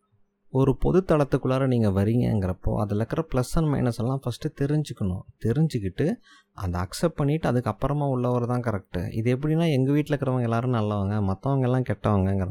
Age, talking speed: 20-39, 145 wpm